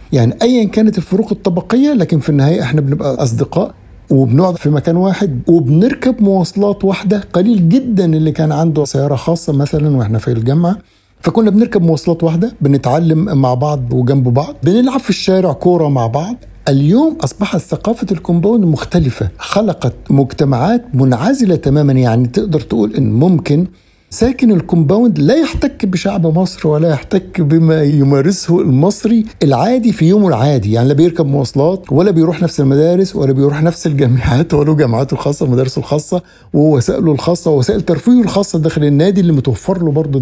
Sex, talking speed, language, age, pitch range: male, 150 wpm, Arabic, 60-79, 140-195 Hz